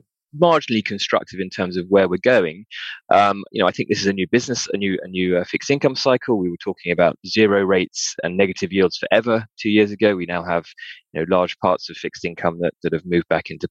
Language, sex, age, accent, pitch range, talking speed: English, male, 20-39, British, 90-115 Hz, 240 wpm